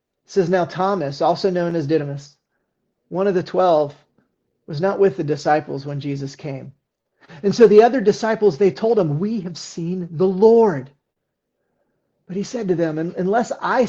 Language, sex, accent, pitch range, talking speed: English, male, American, 150-190 Hz, 175 wpm